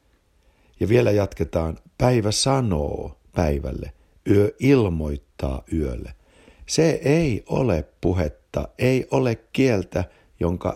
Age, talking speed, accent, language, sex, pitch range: 60-79, 95 wpm, native, Finnish, male, 75-110 Hz